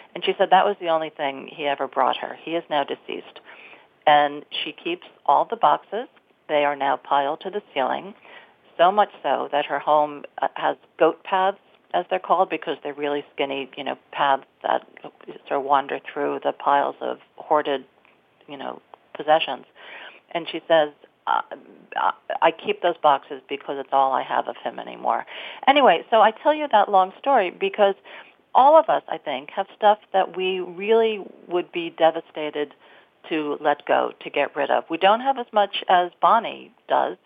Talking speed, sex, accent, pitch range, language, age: 180 wpm, female, American, 155-205 Hz, English, 50-69